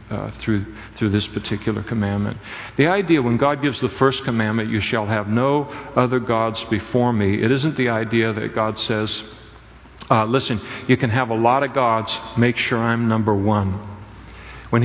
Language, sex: English, male